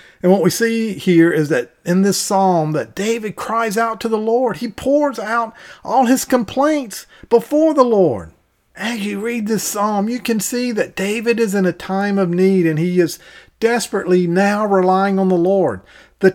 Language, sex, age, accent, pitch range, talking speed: English, male, 40-59, American, 185-240 Hz, 190 wpm